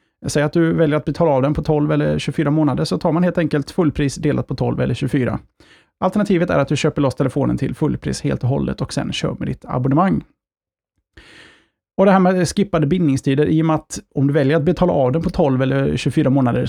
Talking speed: 235 wpm